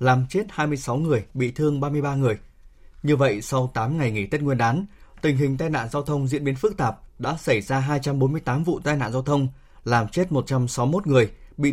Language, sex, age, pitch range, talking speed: Vietnamese, male, 20-39, 125-155 Hz, 210 wpm